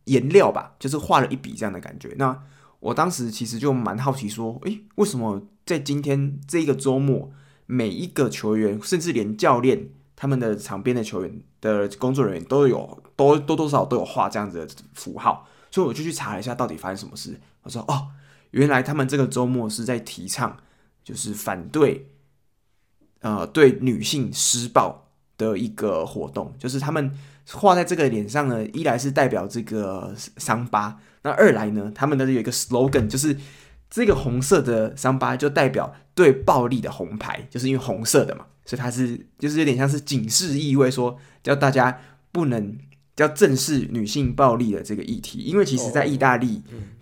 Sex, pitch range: male, 110-140 Hz